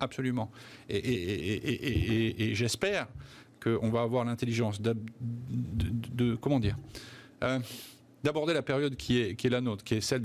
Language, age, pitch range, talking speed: French, 50-69, 115-135 Hz, 110 wpm